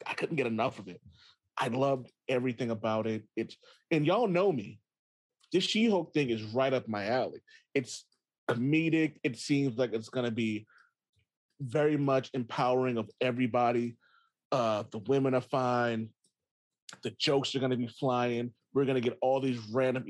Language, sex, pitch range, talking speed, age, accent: English, male, 125-180 Hz, 165 wpm, 30-49, American